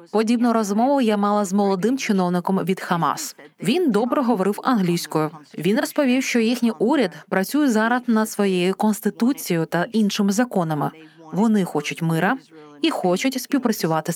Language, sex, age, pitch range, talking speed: Ukrainian, female, 20-39, 175-225 Hz, 135 wpm